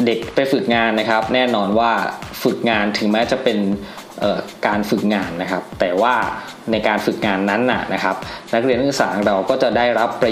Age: 20-39